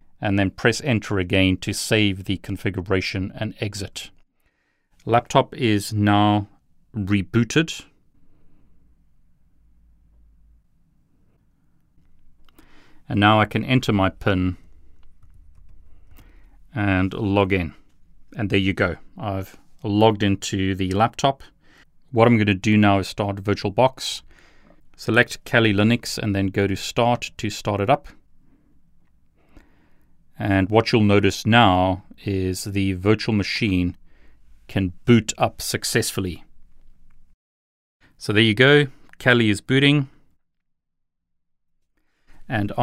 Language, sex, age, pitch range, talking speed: English, male, 40-59, 95-115 Hz, 105 wpm